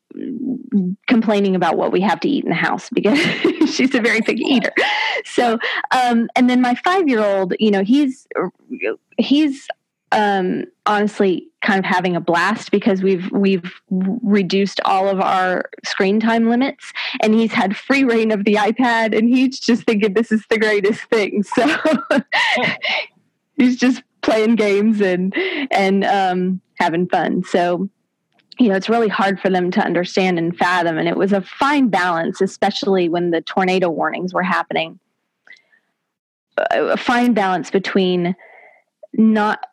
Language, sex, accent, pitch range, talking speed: English, female, American, 185-240 Hz, 150 wpm